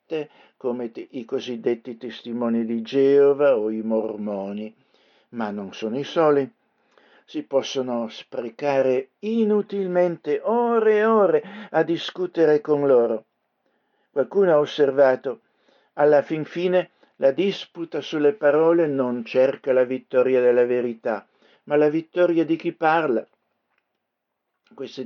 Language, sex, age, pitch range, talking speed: Italian, male, 60-79, 120-165 Hz, 115 wpm